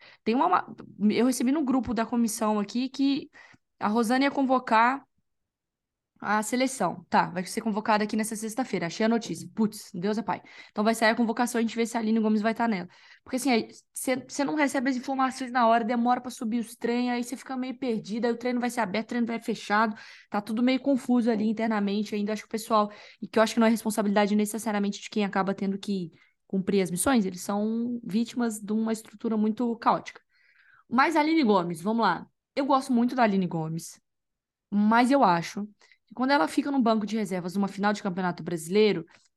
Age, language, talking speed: 10-29, Portuguese, 215 wpm